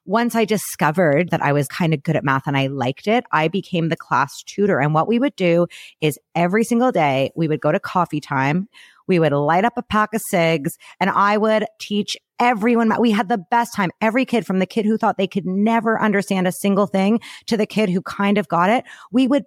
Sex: female